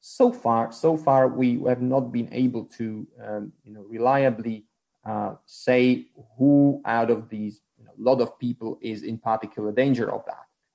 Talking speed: 175 wpm